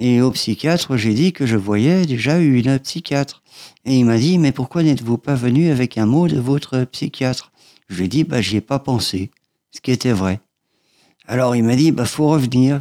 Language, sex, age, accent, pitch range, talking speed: French, male, 50-69, French, 115-150 Hz, 225 wpm